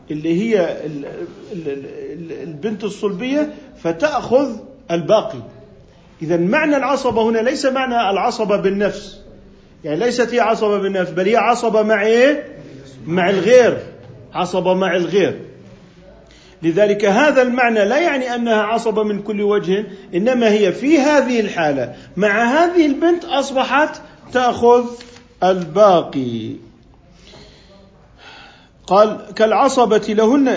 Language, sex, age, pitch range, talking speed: Arabic, male, 40-59, 195-255 Hz, 105 wpm